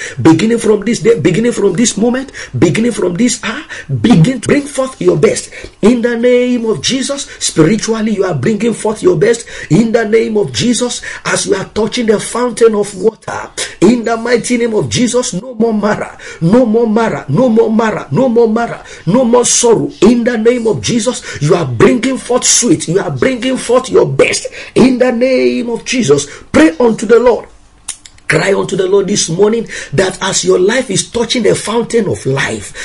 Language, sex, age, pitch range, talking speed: English, male, 50-69, 200-250 Hz, 200 wpm